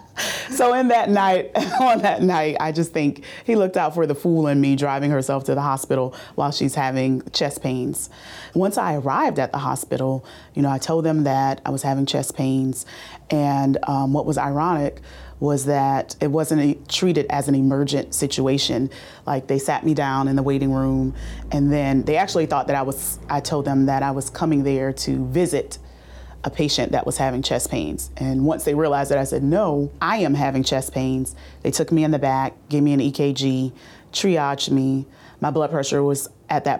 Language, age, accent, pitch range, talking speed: English, 30-49, American, 135-155 Hz, 200 wpm